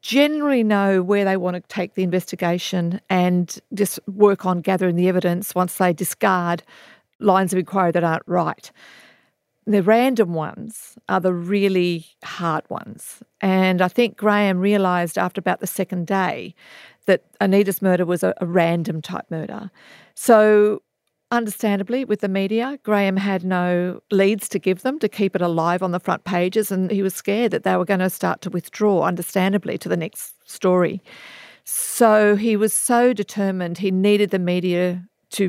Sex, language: female, English